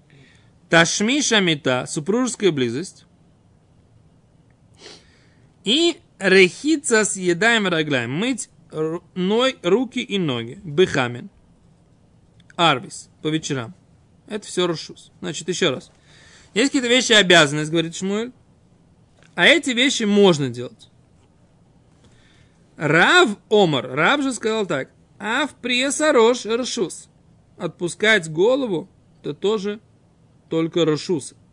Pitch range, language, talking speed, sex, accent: 155-225 Hz, Russian, 95 wpm, male, native